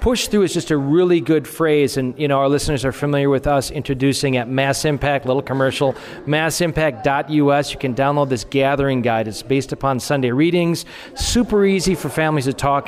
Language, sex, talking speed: English, male, 190 wpm